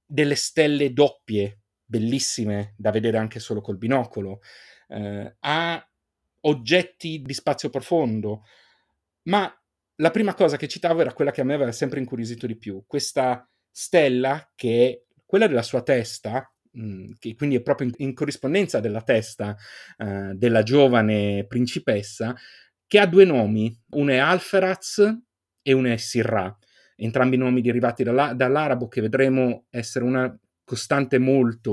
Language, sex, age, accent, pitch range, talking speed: Italian, male, 30-49, native, 105-145 Hz, 145 wpm